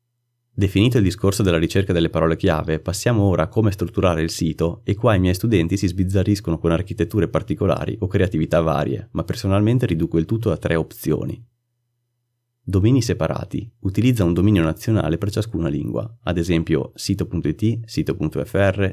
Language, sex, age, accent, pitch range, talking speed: Italian, male, 30-49, native, 85-115 Hz, 155 wpm